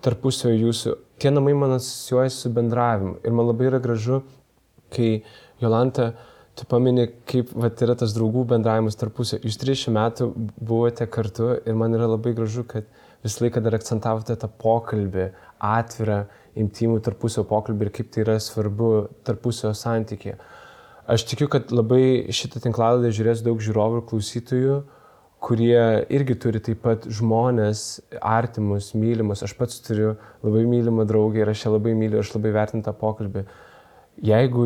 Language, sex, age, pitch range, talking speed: English, male, 20-39, 105-120 Hz, 150 wpm